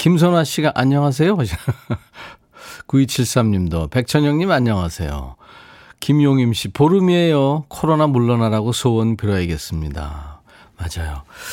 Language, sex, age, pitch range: Korean, male, 40-59, 105-145 Hz